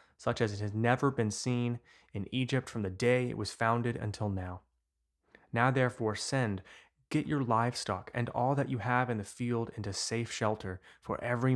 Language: English